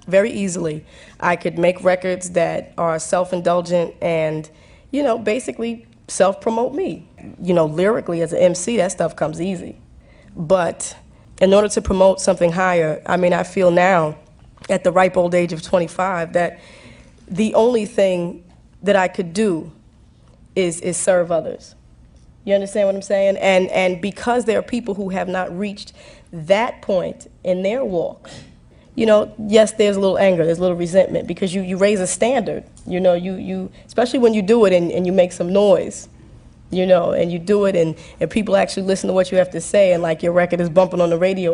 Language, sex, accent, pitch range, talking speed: English, female, American, 175-200 Hz, 195 wpm